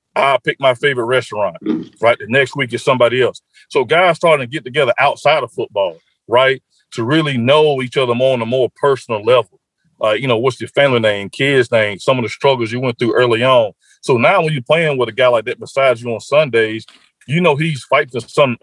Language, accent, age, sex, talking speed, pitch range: English, American, 40-59, male, 230 wpm, 120-145 Hz